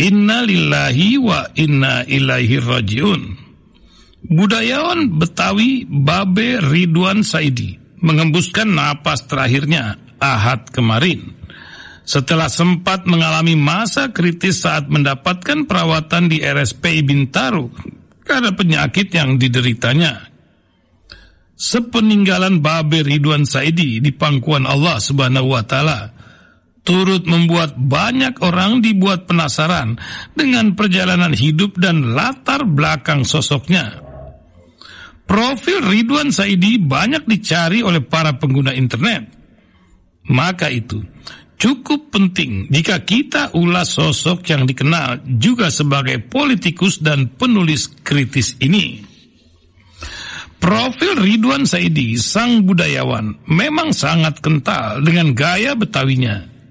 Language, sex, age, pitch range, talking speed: Indonesian, male, 60-79, 130-195 Hz, 95 wpm